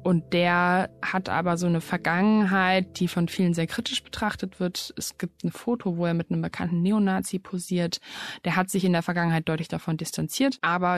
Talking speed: 190 wpm